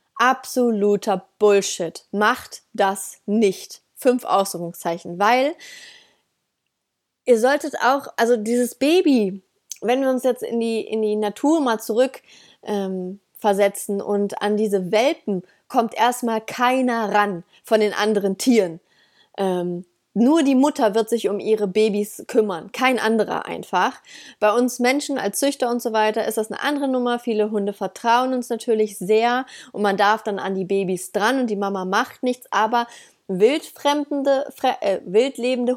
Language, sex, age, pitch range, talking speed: German, female, 30-49, 200-250 Hz, 150 wpm